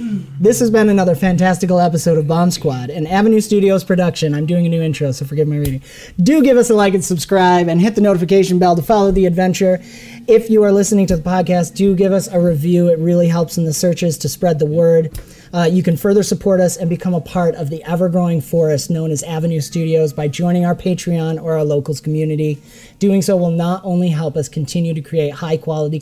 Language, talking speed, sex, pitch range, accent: English, 230 wpm, male, 155-185 Hz, American